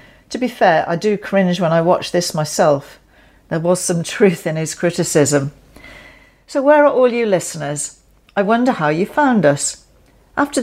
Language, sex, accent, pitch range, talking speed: English, female, British, 155-200 Hz, 175 wpm